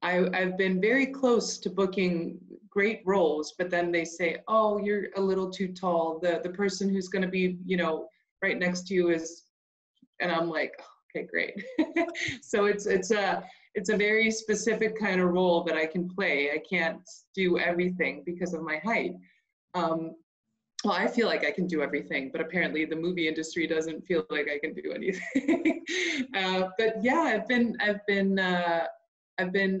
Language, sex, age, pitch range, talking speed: English, female, 20-39, 170-205 Hz, 185 wpm